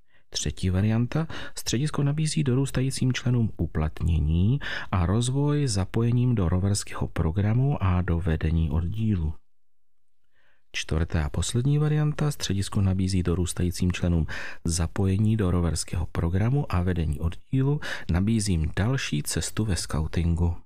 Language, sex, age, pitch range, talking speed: Czech, male, 40-59, 85-110 Hz, 105 wpm